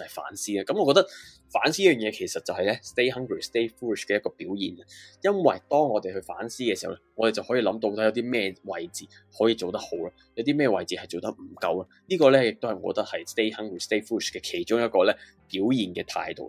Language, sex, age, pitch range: Chinese, male, 20-39, 105-160 Hz